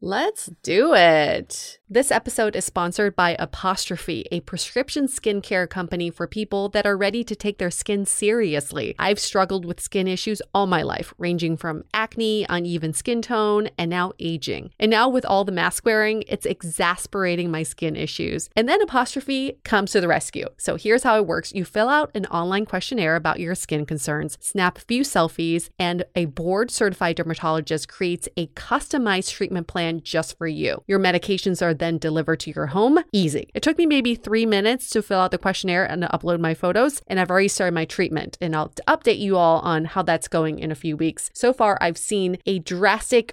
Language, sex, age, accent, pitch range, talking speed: English, female, 30-49, American, 170-215 Hz, 190 wpm